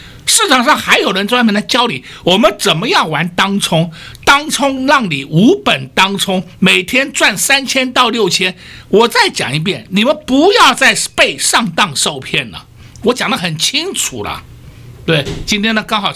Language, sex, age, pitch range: Chinese, male, 60-79, 160-235 Hz